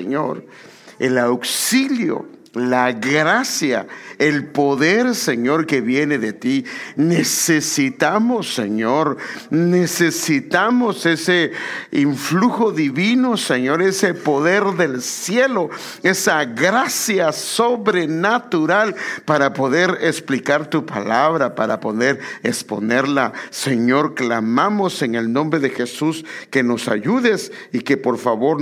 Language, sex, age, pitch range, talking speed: English, male, 50-69, 120-170 Hz, 100 wpm